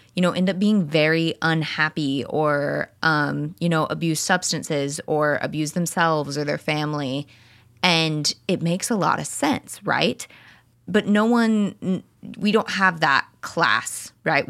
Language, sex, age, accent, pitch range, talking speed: English, female, 20-39, American, 145-180 Hz, 150 wpm